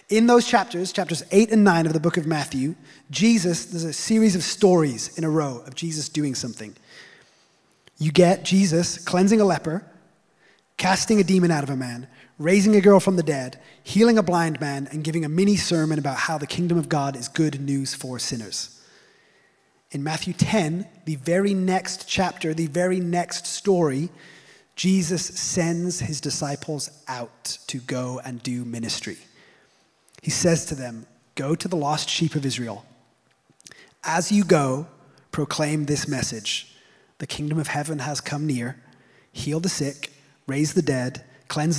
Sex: male